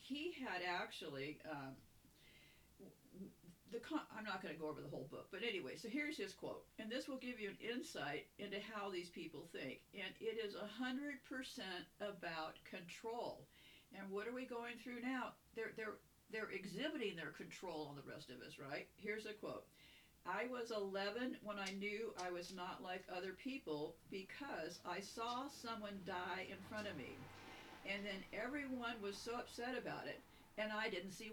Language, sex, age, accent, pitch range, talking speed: English, female, 50-69, American, 175-235 Hz, 180 wpm